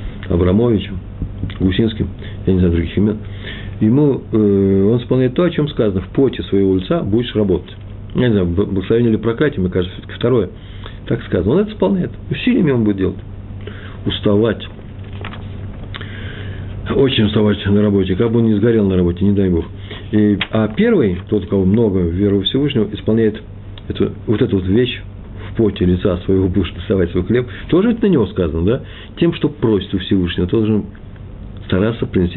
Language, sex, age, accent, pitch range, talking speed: Russian, male, 50-69, native, 95-110 Hz, 165 wpm